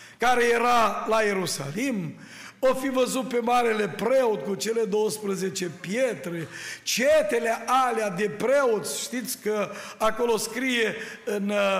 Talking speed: 115 wpm